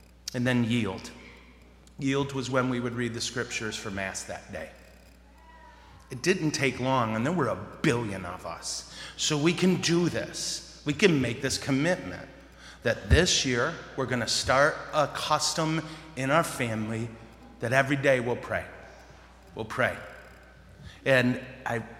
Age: 30-49